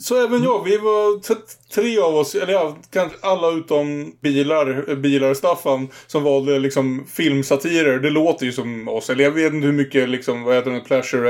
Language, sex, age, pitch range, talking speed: Swedish, male, 20-39, 130-150 Hz, 200 wpm